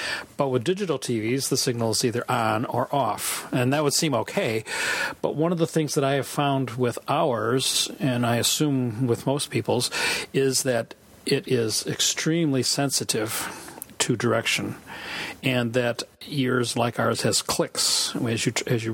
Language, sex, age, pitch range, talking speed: English, male, 40-59, 120-140 Hz, 165 wpm